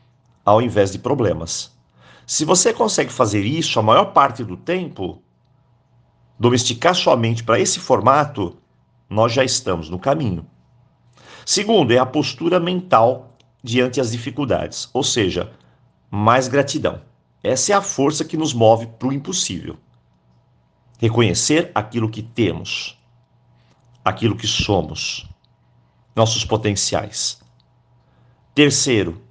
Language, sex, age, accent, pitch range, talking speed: Portuguese, male, 50-69, Brazilian, 95-140 Hz, 115 wpm